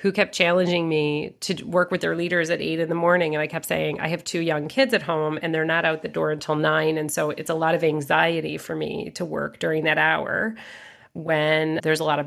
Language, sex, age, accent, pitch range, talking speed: English, female, 40-59, American, 155-190 Hz, 255 wpm